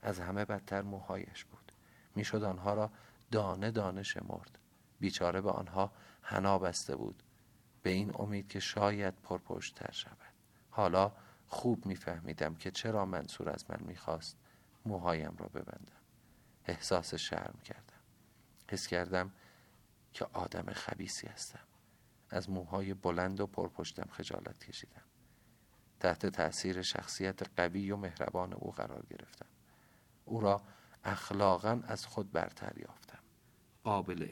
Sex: male